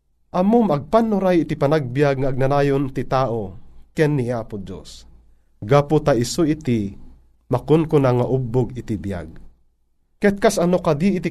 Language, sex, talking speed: Filipino, male, 145 wpm